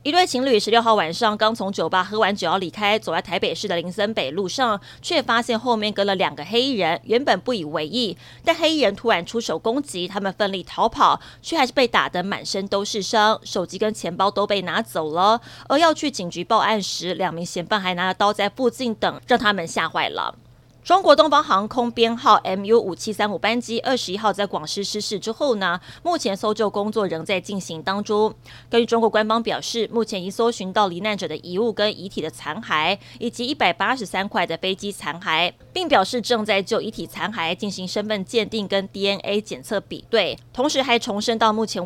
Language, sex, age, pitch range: Chinese, female, 30-49, 185-230 Hz